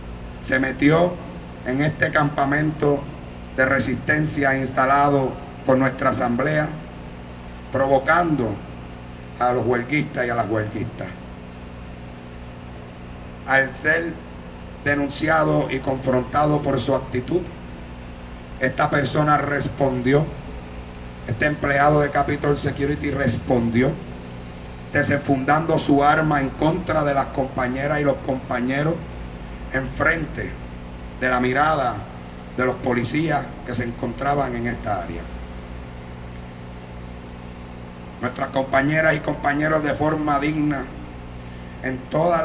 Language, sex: Spanish, male